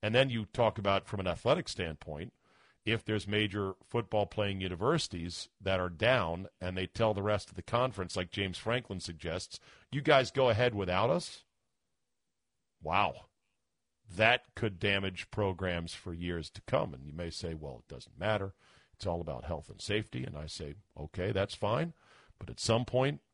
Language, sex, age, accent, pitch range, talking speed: English, male, 50-69, American, 90-115 Hz, 175 wpm